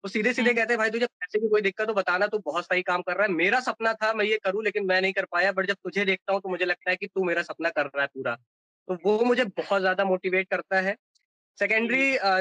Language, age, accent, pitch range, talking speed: Hindi, 20-39, native, 170-215 Hz, 285 wpm